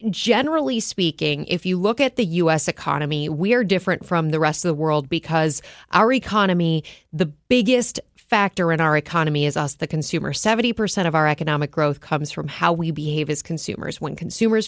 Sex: female